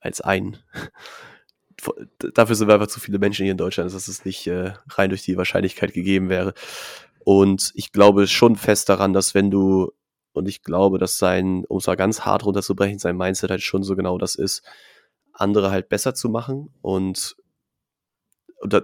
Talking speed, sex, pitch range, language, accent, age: 185 wpm, male, 95-110 Hz, German, German, 20-39